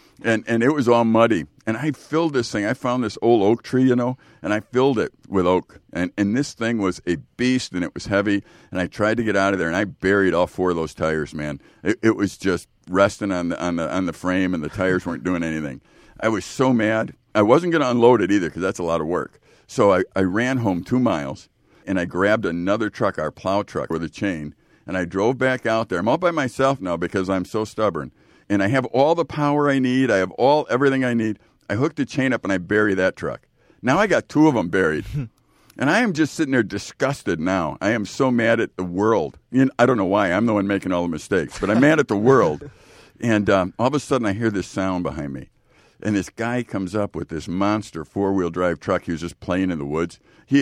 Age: 50-69